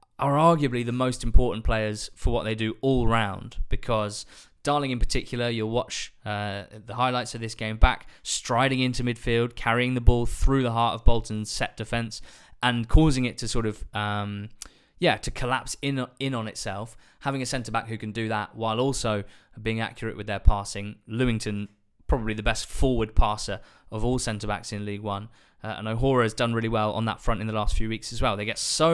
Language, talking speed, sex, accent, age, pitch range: English, 205 wpm, male, British, 20-39, 105-125 Hz